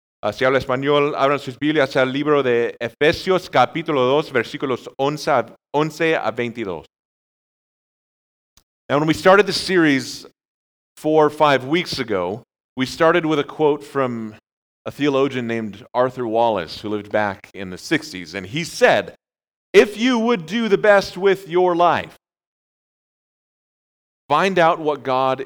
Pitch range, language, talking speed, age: 115-155 Hz, English, 125 wpm, 40-59